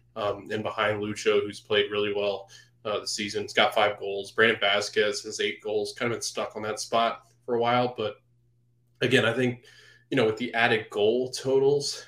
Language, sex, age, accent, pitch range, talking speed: English, male, 20-39, American, 105-145 Hz, 200 wpm